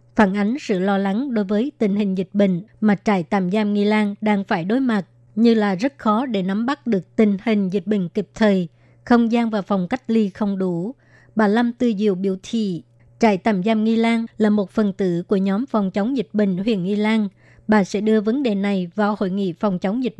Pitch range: 195-225 Hz